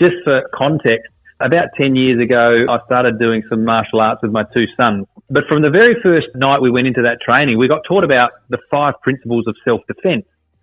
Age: 30-49